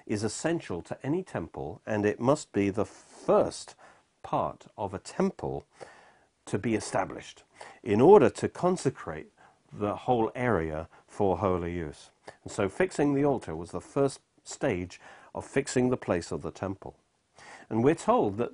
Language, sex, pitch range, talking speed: English, male, 100-160 Hz, 155 wpm